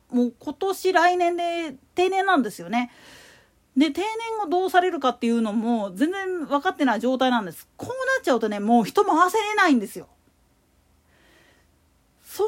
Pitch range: 245-370 Hz